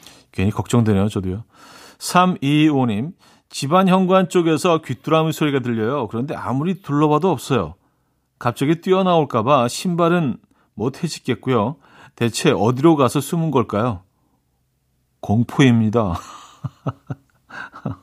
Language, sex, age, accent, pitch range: Korean, male, 40-59, native, 115-170 Hz